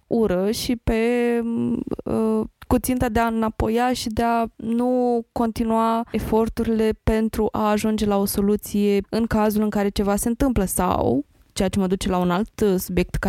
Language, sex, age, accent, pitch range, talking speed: Romanian, female, 20-39, native, 180-215 Hz, 165 wpm